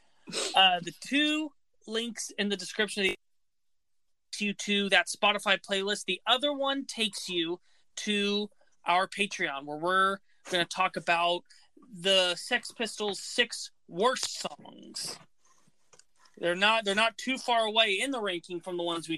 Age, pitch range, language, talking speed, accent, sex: 20-39, 155-210 Hz, English, 145 wpm, American, male